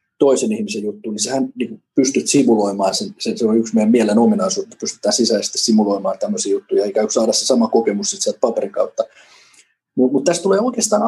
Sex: male